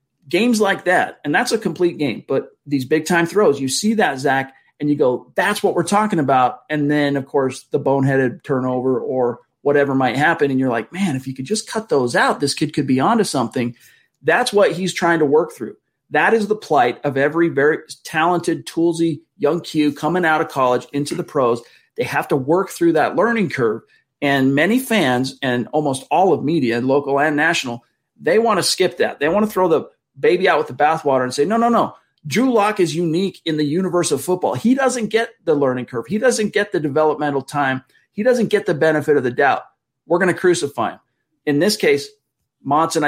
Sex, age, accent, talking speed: male, 40-59, American, 215 wpm